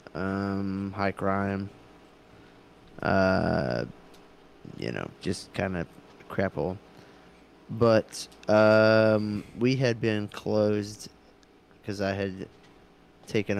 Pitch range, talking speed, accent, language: 95-110 Hz, 90 wpm, American, English